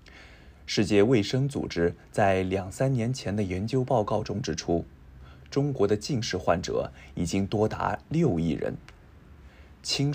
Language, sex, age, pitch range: Japanese, male, 20-39, 80-115 Hz